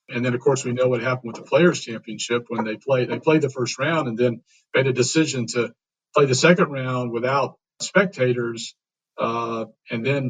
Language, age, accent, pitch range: English, 50-69, American, 115-140 Hz